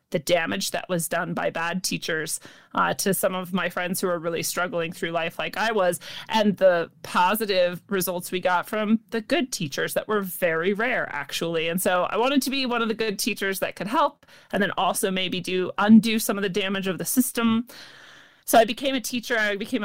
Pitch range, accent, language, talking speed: 180-225 Hz, American, English, 220 wpm